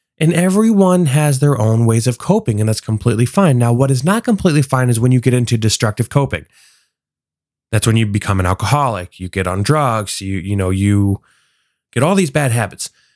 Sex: male